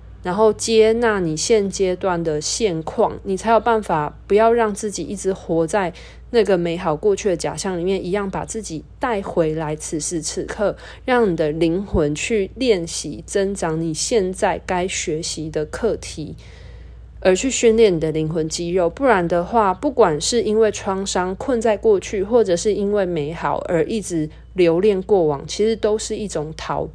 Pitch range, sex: 160-215 Hz, female